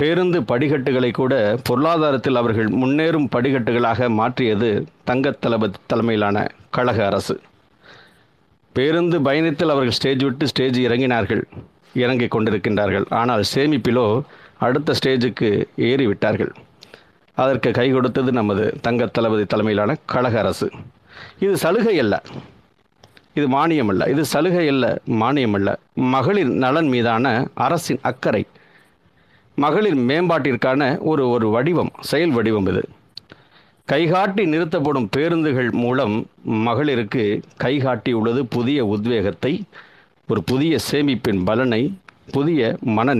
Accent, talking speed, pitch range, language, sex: native, 100 wpm, 110-140 Hz, Tamil, male